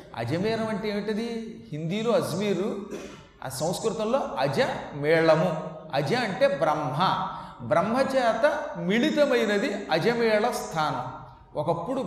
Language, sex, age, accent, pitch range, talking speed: Telugu, male, 30-49, native, 175-230 Hz, 85 wpm